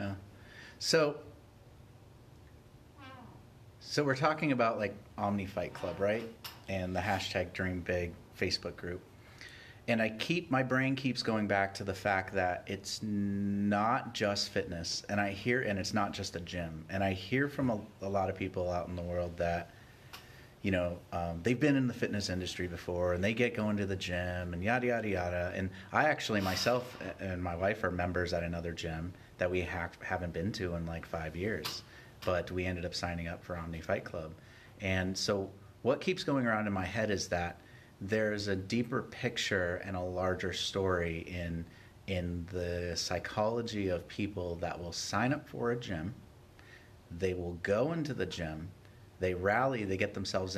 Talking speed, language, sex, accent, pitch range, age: 180 wpm, English, male, American, 90-115 Hz, 30-49